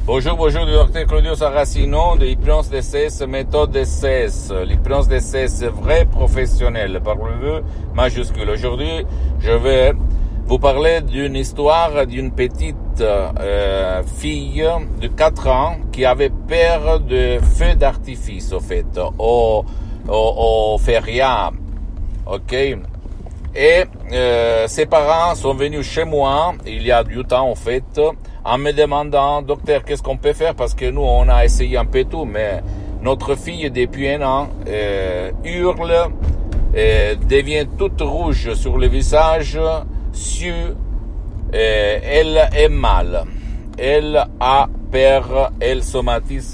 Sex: male